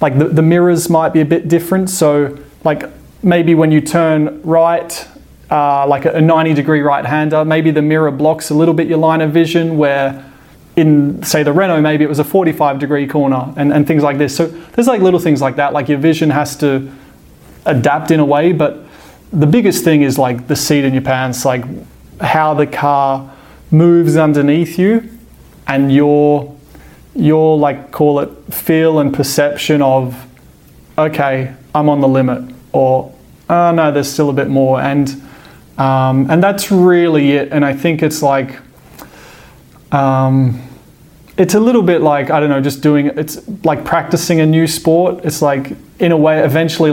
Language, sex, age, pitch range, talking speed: English, male, 30-49, 140-160 Hz, 180 wpm